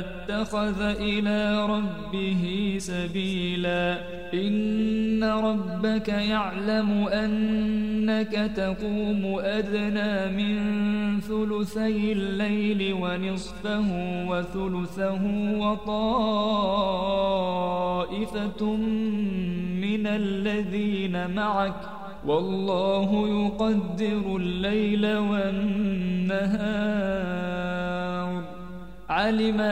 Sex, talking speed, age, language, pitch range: male, 50 wpm, 20-39, Arabic, 190-210 Hz